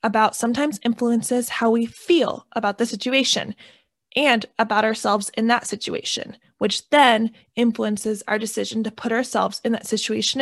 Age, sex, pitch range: 20-39, female, 215-250 Hz